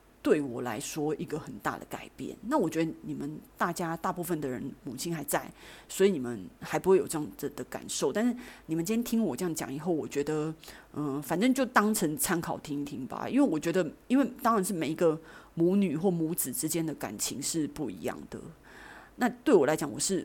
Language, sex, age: Chinese, female, 30-49